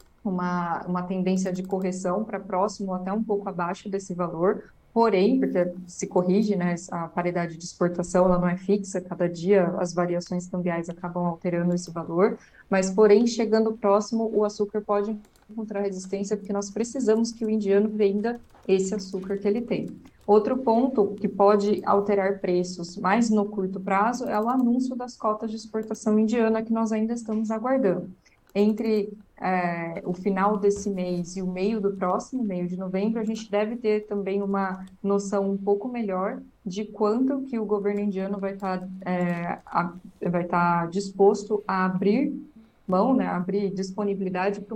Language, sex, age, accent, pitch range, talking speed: Portuguese, female, 20-39, Brazilian, 185-215 Hz, 165 wpm